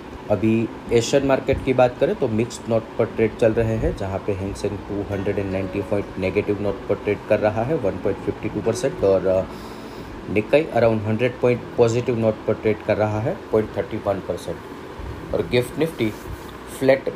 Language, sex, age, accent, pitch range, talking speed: Hindi, male, 30-49, native, 100-120 Hz, 155 wpm